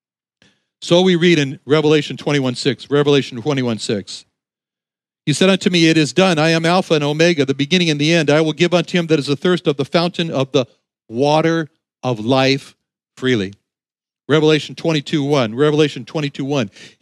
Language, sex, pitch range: English, male, 140-190 Hz